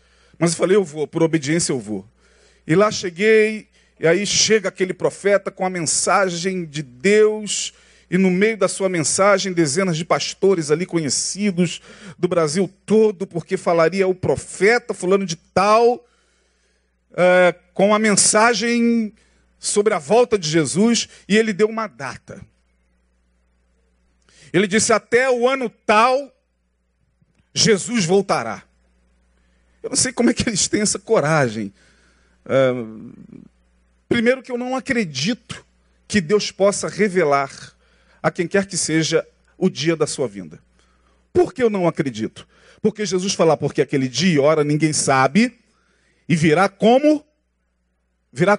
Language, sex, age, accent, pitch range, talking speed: Portuguese, male, 40-59, Brazilian, 140-215 Hz, 140 wpm